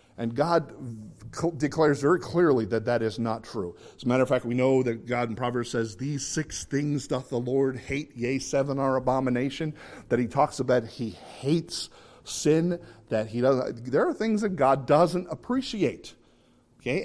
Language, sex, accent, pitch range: English, male, American, 115-155 Hz